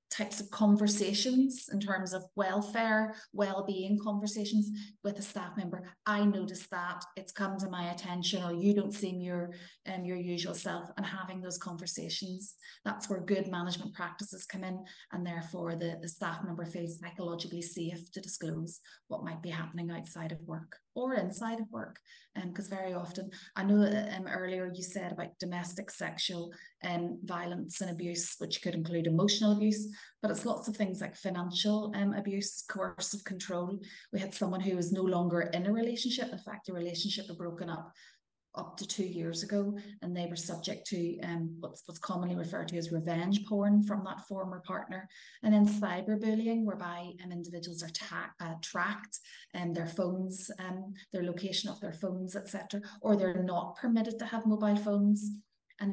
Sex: female